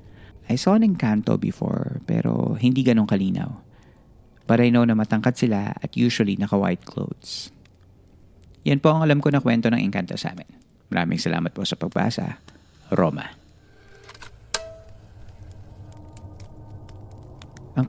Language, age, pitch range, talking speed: Filipino, 40-59, 95-120 Hz, 115 wpm